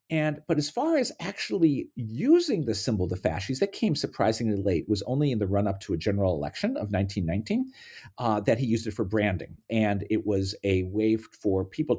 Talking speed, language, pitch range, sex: 205 wpm, English, 95-140 Hz, male